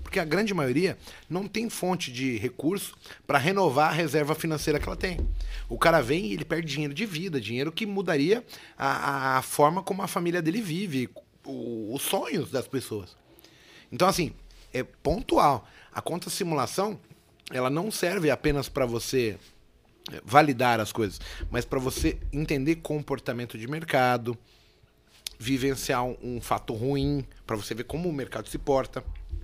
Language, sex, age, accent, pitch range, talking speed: Portuguese, male, 30-49, Brazilian, 120-160 Hz, 155 wpm